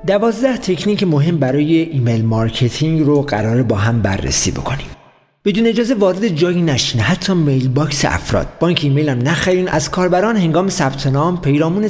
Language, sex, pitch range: Persian, male, 135-180 Hz